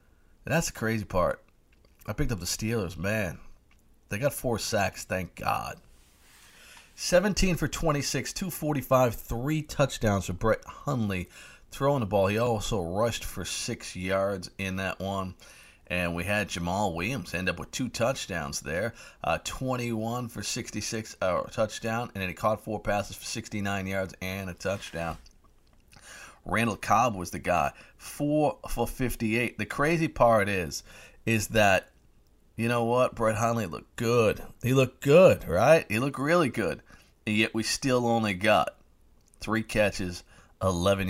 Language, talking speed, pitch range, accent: English, 150 wpm, 95-130 Hz, American